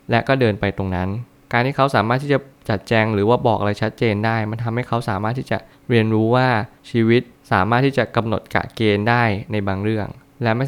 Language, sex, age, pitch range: Thai, male, 20-39, 105-125 Hz